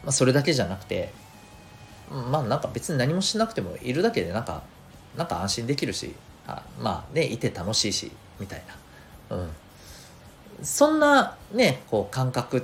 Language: Japanese